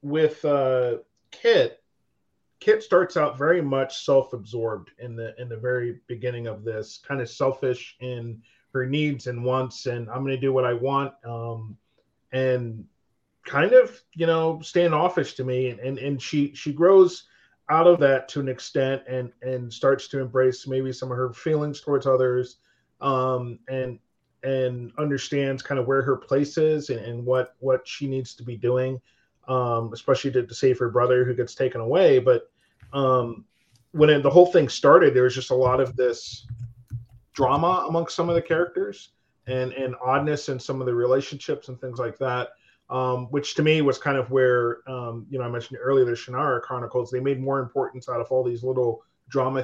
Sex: male